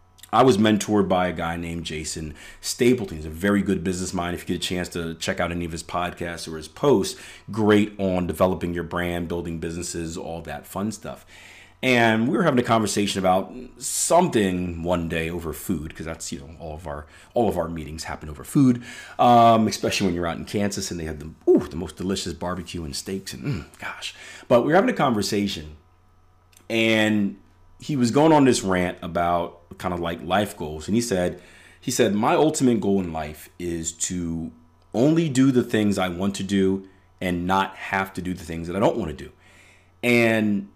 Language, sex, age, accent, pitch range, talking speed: English, male, 30-49, American, 85-105 Hz, 205 wpm